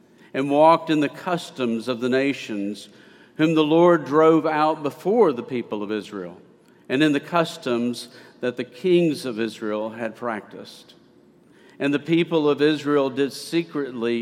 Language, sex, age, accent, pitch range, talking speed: English, male, 50-69, American, 125-155 Hz, 150 wpm